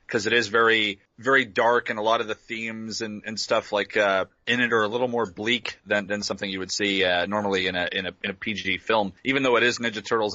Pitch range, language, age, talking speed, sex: 105-130 Hz, English, 30-49, 265 wpm, male